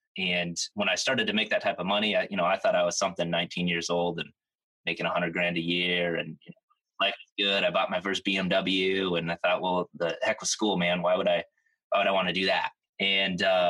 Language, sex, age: English, male, 20-39